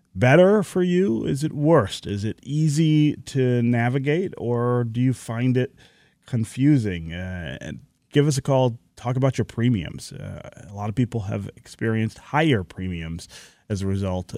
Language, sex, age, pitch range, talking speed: English, male, 30-49, 100-130 Hz, 160 wpm